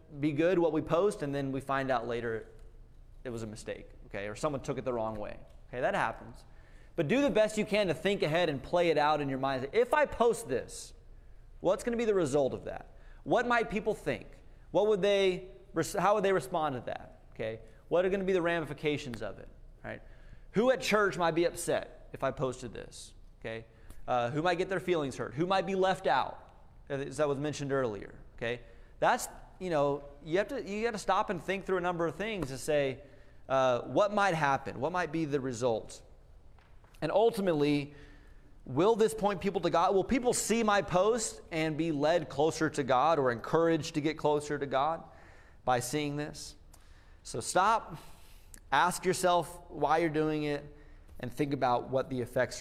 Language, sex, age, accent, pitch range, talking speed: English, male, 30-49, American, 125-185 Hz, 205 wpm